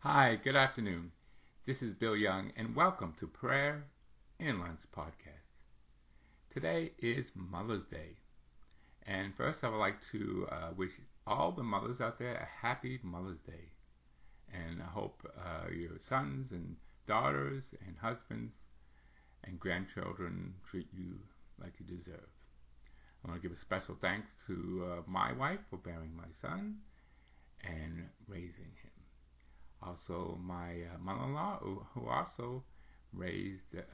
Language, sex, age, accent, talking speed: English, male, 50-69, American, 140 wpm